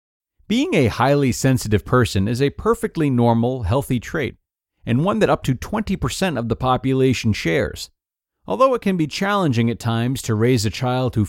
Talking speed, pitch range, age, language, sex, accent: 175 wpm, 110-150 Hz, 40-59, English, male, American